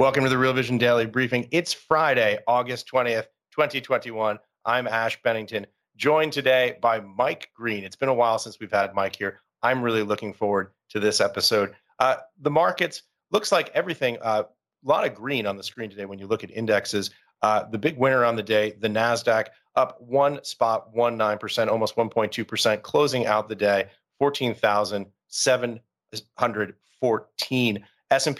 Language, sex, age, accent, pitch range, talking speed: English, male, 30-49, American, 105-130 Hz, 165 wpm